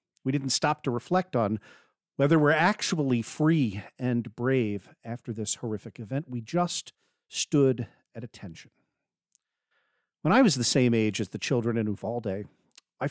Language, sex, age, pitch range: English, male, 50-69, 125-190 Hz